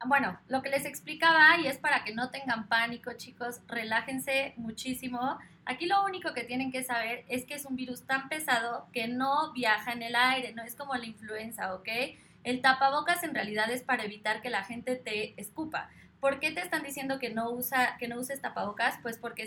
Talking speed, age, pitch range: 200 wpm, 20-39, 230-275 Hz